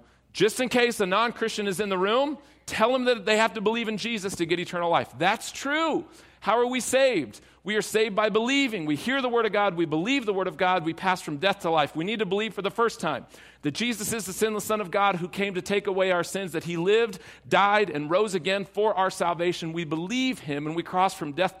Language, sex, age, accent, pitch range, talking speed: English, male, 40-59, American, 165-215 Hz, 255 wpm